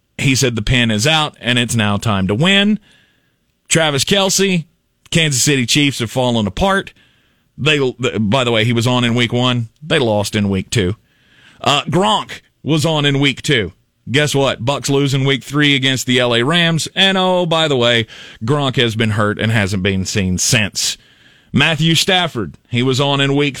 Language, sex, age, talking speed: English, male, 40-59, 185 wpm